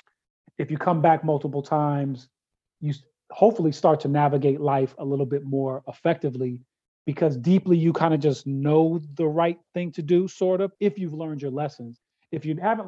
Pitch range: 130-155 Hz